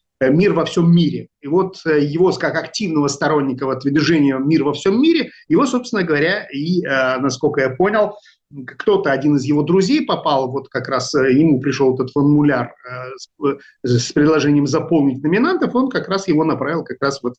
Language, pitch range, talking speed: Russian, 145-210 Hz, 165 wpm